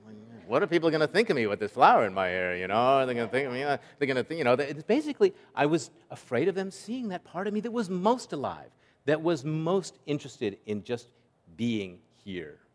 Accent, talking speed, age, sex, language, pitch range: American, 250 wpm, 50-69, male, English, 110-140 Hz